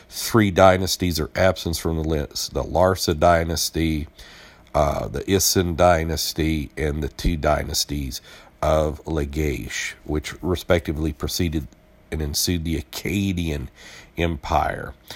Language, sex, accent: English, male, American